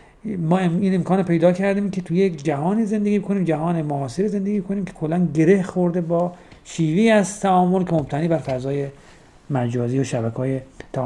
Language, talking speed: Persian, 170 wpm